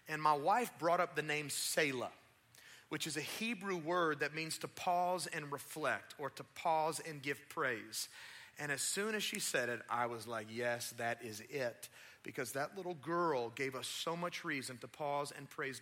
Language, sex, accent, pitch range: English, male, American, 145-190 Hz